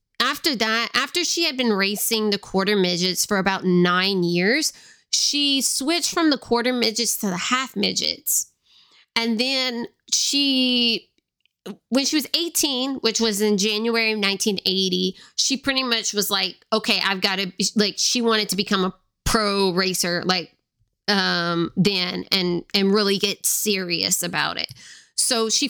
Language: English